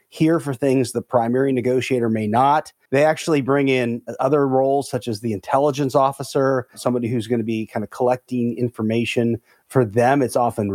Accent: American